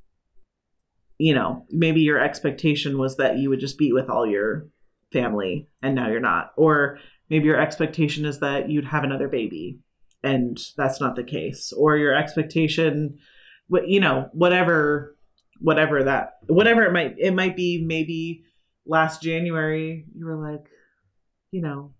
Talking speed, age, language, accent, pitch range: 155 wpm, 30-49, English, American, 145-175 Hz